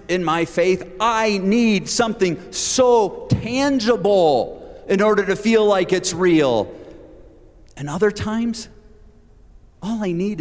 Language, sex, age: English, male, 40-59